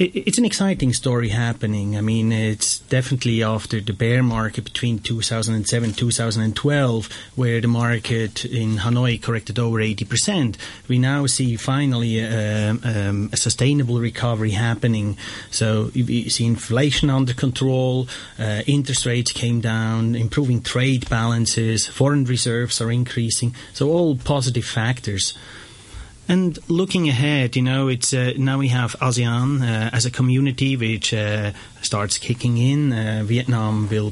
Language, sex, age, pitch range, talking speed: English, male, 30-49, 110-130 Hz, 135 wpm